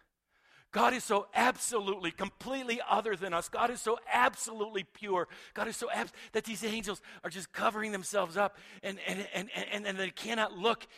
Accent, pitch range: American, 180-220 Hz